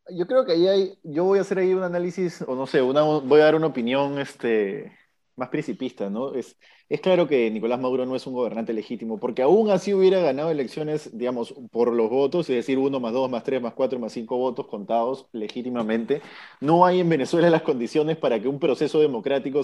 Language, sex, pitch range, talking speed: Spanish, male, 125-155 Hz, 215 wpm